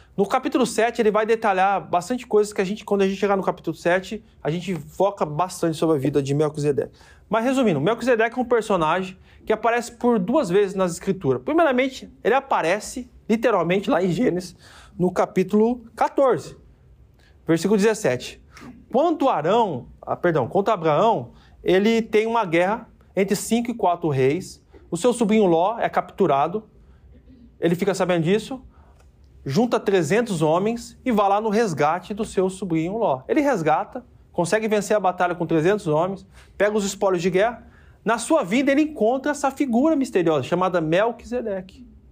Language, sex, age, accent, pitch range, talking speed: Portuguese, male, 20-39, Brazilian, 175-235 Hz, 160 wpm